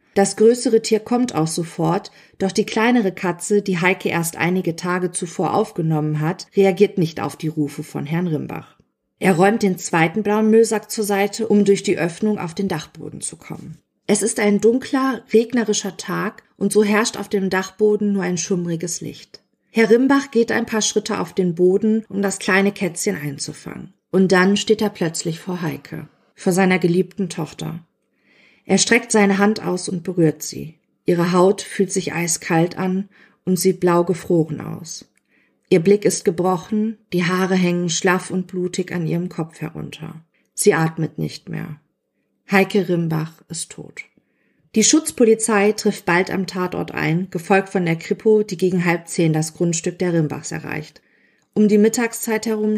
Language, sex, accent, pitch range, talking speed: German, female, German, 170-210 Hz, 170 wpm